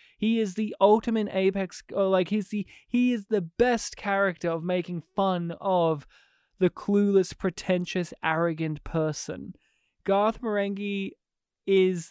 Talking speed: 130 wpm